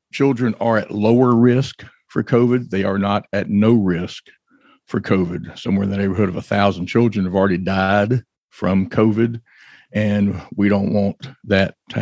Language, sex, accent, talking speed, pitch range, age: English, male, American, 170 wpm, 100-115 Hz, 50-69